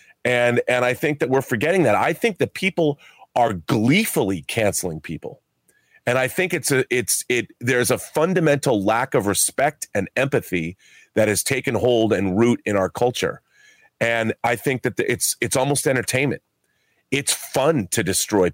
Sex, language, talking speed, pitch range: male, English, 170 wpm, 120-165 Hz